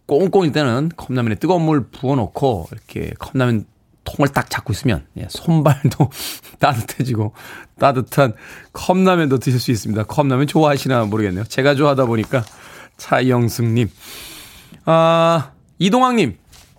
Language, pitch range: Korean, 125-195 Hz